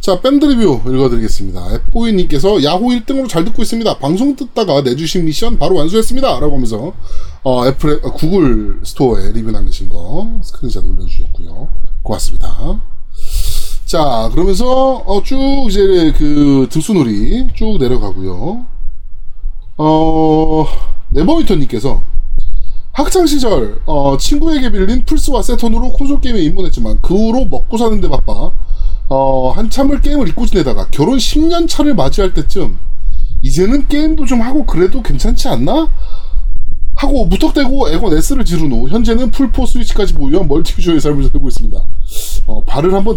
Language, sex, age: Korean, male, 20-39